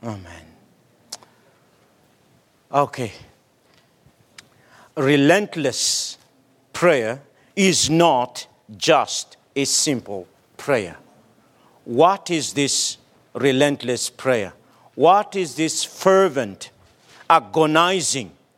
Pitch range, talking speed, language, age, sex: 140-185 Hz, 65 wpm, English, 50-69, male